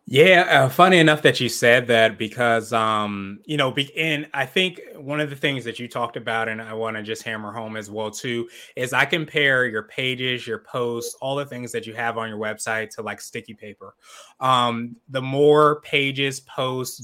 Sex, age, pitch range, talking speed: male, 20-39, 115-135 Hz, 205 wpm